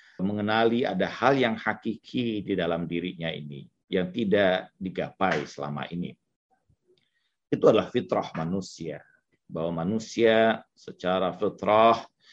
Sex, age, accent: male, 40-59, native